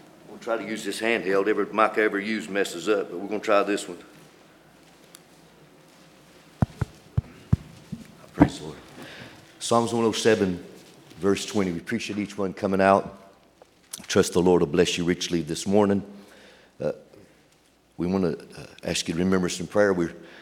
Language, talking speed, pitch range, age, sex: English, 155 wpm, 85-105 Hz, 50-69, male